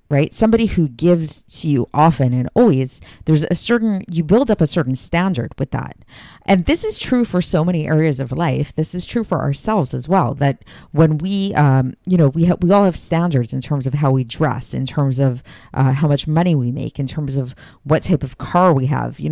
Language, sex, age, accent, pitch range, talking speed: English, female, 40-59, American, 140-180 Hz, 225 wpm